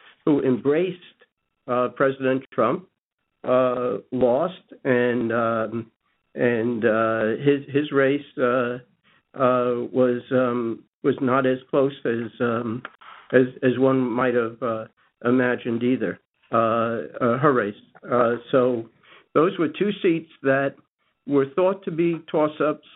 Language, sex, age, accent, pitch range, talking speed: English, male, 60-79, American, 120-140 Hz, 130 wpm